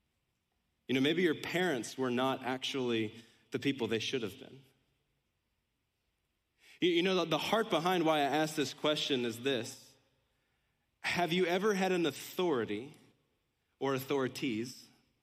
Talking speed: 135 wpm